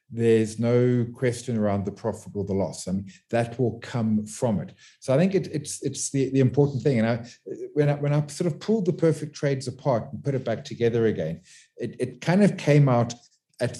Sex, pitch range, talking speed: male, 105-130 Hz, 225 wpm